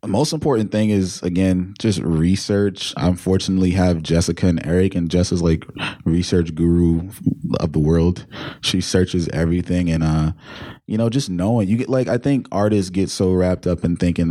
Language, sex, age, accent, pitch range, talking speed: English, male, 20-39, American, 85-100 Hz, 180 wpm